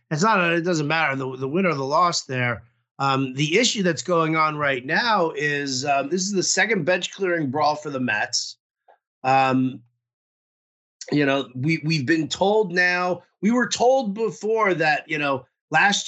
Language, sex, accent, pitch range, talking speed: English, male, American, 135-185 Hz, 180 wpm